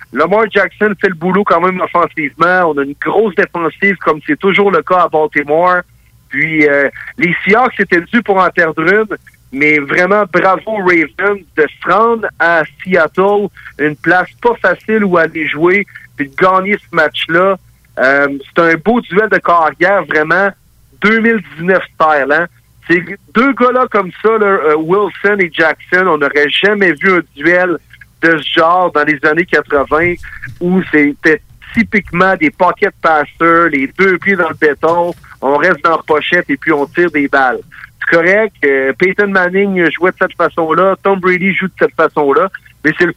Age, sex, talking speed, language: 50-69, male, 170 wpm, French